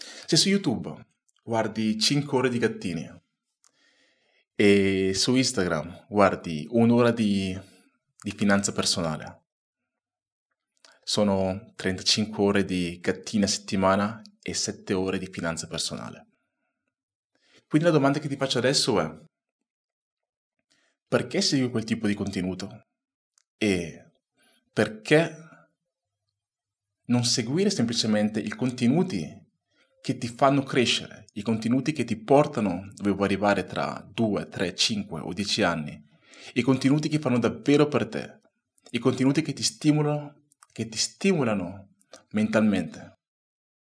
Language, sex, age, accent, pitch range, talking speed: Italian, male, 30-49, native, 100-135 Hz, 115 wpm